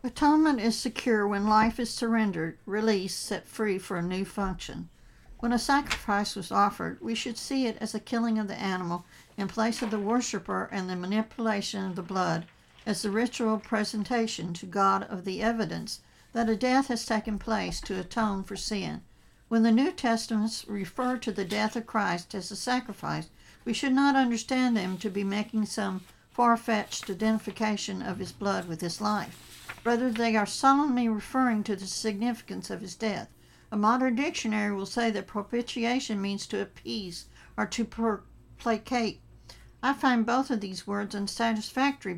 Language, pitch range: English, 200-235 Hz